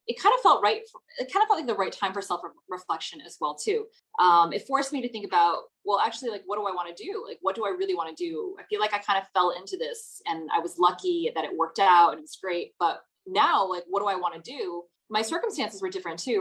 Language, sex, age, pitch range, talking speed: Vietnamese, female, 20-39, 175-290 Hz, 280 wpm